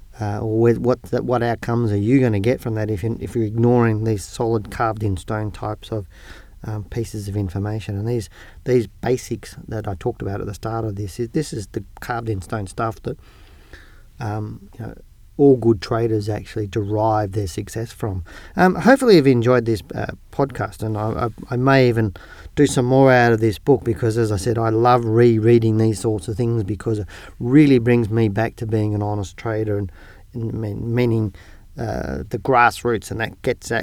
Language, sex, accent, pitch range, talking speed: English, male, Australian, 105-120 Hz, 200 wpm